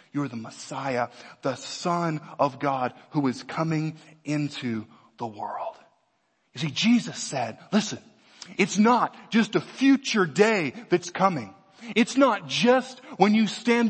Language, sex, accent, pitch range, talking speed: English, male, American, 165-225 Hz, 140 wpm